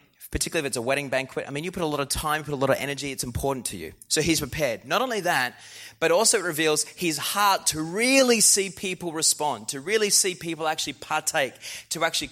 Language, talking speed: English, 235 wpm